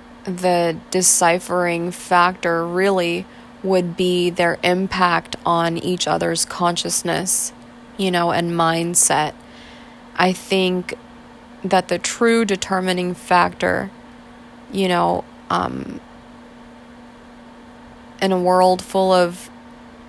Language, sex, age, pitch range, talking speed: English, female, 20-39, 170-190 Hz, 95 wpm